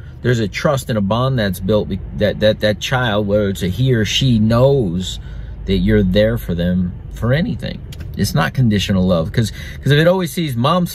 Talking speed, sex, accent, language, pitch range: 205 wpm, male, American, English, 100-130 Hz